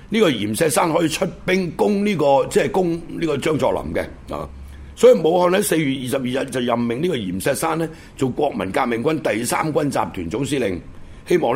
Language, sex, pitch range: Chinese, male, 105-150 Hz